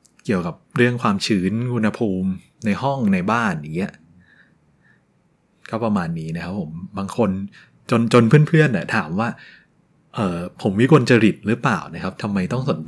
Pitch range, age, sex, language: 100-145 Hz, 20-39, male, Thai